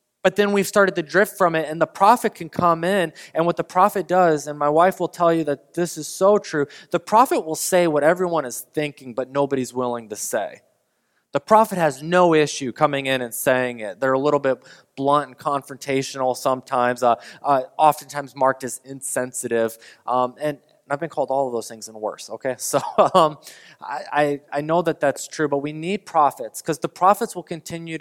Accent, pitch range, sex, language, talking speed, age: American, 130-175 Hz, male, English, 205 wpm, 20-39